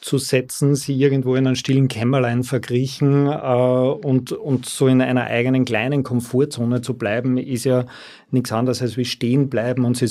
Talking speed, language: 180 wpm, German